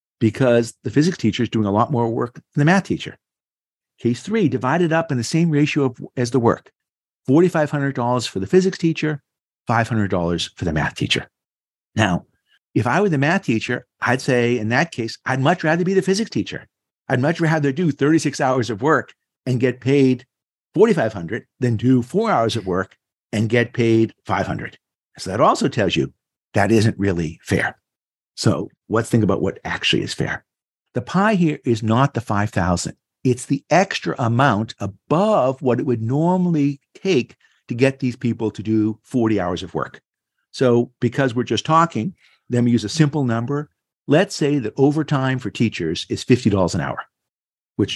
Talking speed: 180 wpm